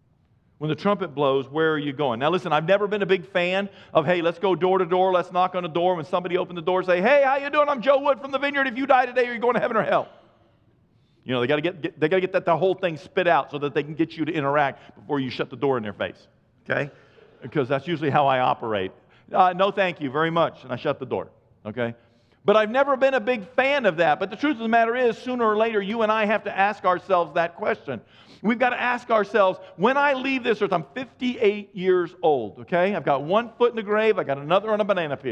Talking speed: 275 wpm